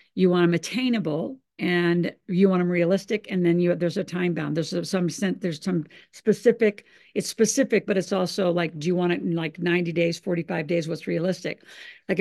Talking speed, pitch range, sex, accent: 200 wpm, 175-205 Hz, female, American